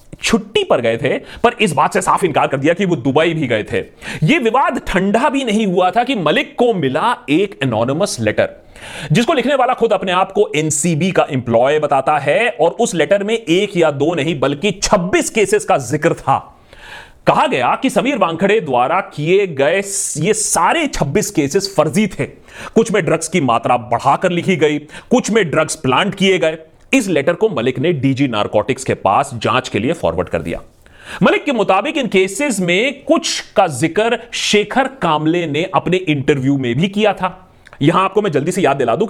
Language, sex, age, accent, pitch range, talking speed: Hindi, male, 30-49, native, 145-215 Hz, 195 wpm